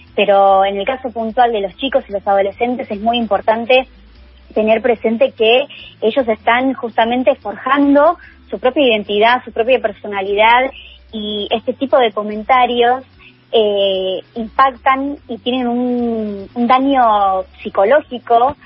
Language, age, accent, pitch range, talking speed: Spanish, 20-39, Argentinian, 205-255 Hz, 130 wpm